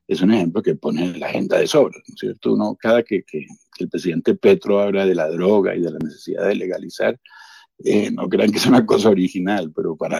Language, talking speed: Spanish, 235 wpm